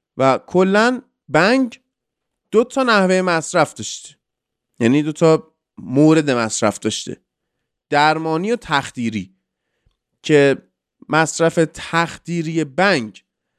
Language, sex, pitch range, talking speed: Persian, male, 140-220 Hz, 95 wpm